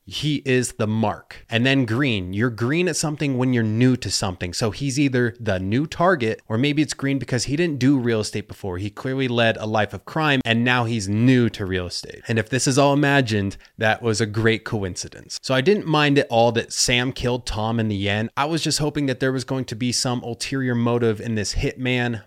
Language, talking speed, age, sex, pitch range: English, 235 wpm, 20-39, male, 110-140 Hz